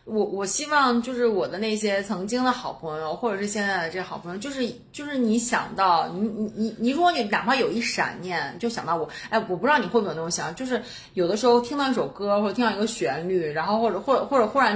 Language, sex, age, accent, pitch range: Chinese, female, 30-49, native, 175-235 Hz